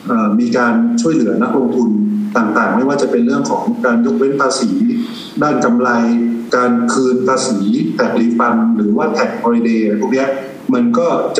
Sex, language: male, Thai